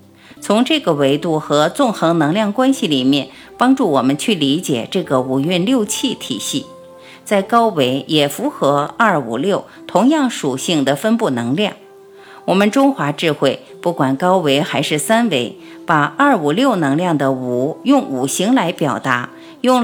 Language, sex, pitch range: Chinese, female, 140-235 Hz